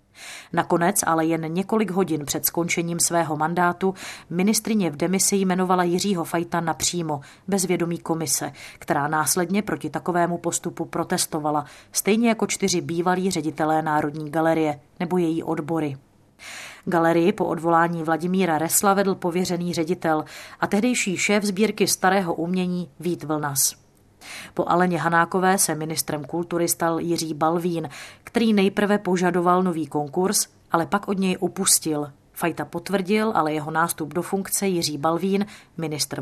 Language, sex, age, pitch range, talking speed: Czech, female, 30-49, 160-185 Hz, 135 wpm